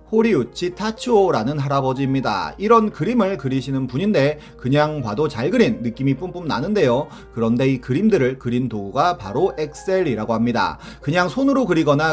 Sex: male